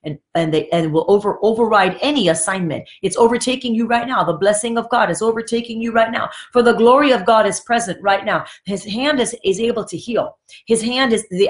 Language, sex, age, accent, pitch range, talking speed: English, female, 40-59, American, 205-275 Hz, 225 wpm